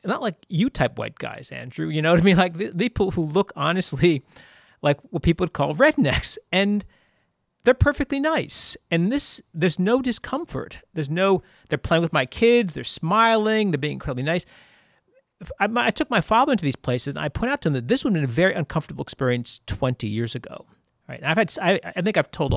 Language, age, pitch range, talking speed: English, 40-59, 125-190 Hz, 220 wpm